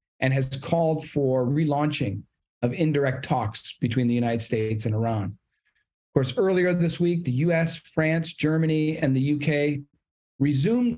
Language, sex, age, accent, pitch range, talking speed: English, male, 40-59, American, 125-155 Hz, 150 wpm